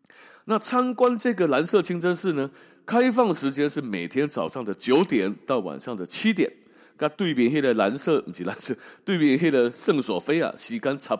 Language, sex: Chinese, male